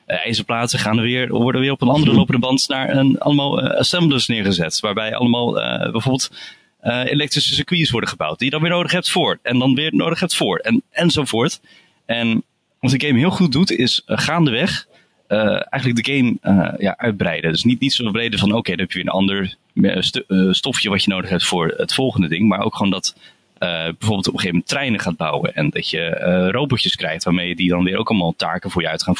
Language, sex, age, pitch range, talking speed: Dutch, male, 30-49, 105-135 Hz, 230 wpm